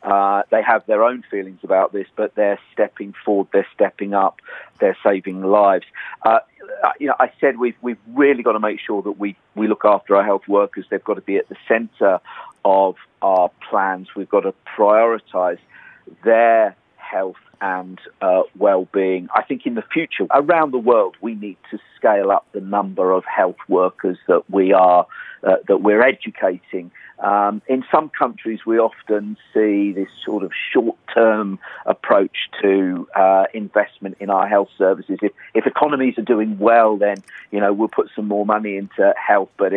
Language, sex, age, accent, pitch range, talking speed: English, male, 50-69, British, 95-115 Hz, 180 wpm